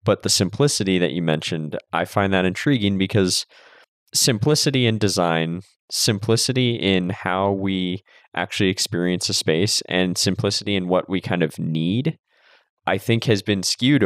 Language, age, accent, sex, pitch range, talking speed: English, 20-39, American, male, 90-115 Hz, 150 wpm